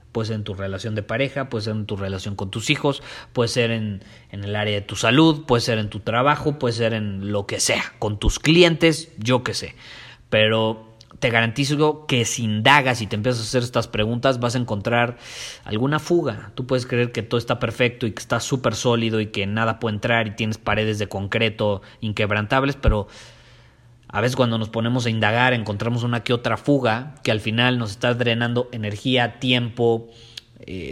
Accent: Mexican